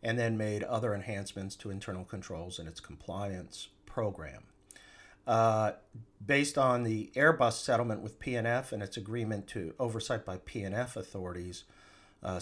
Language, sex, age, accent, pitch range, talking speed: English, male, 50-69, American, 90-110 Hz, 140 wpm